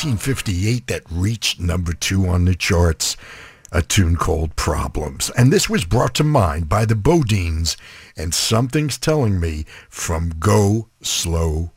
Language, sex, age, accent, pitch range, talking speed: English, male, 60-79, American, 85-115 Hz, 145 wpm